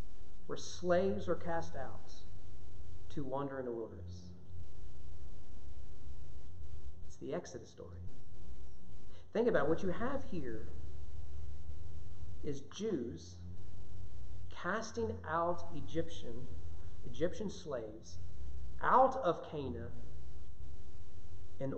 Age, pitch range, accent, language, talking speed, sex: 40-59, 90-140 Hz, American, English, 90 wpm, male